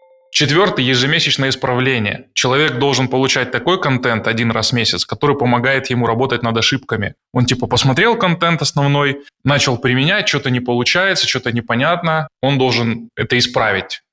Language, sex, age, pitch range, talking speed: Russian, male, 20-39, 120-145 Hz, 145 wpm